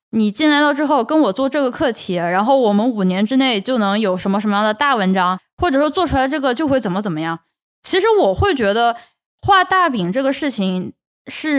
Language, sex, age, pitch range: Chinese, female, 10-29, 200-290 Hz